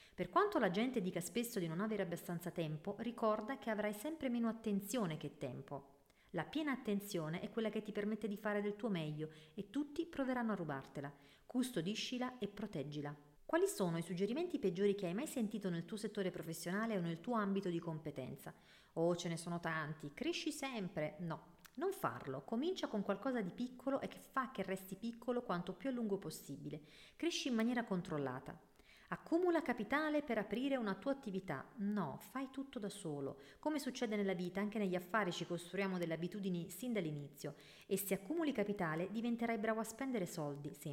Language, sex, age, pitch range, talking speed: Italian, female, 40-59, 170-240 Hz, 180 wpm